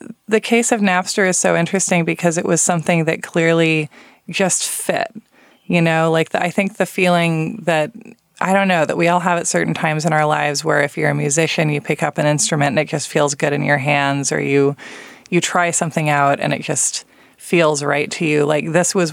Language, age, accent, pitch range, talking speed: English, 20-39, American, 145-180 Hz, 220 wpm